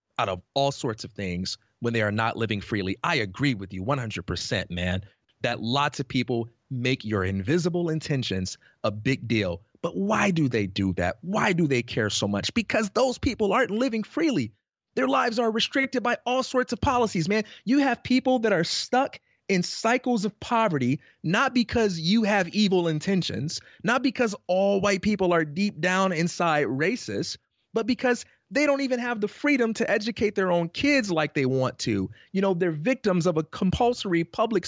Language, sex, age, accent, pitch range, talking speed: English, male, 30-49, American, 140-240 Hz, 185 wpm